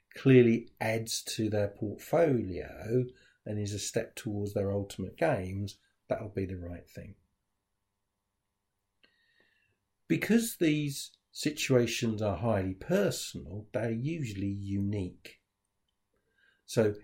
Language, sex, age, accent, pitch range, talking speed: English, male, 50-69, British, 95-110 Hz, 100 wpm